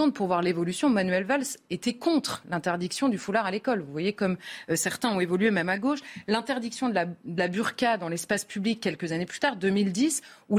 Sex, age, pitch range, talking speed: female, 30-49, 185-230 Hz, 205 wpm